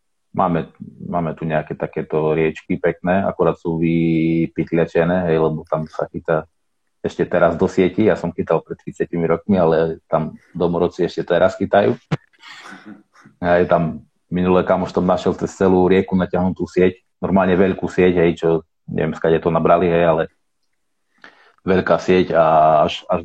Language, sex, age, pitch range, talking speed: Czech, male, 30-49, 80-95 Hz, 150 wpm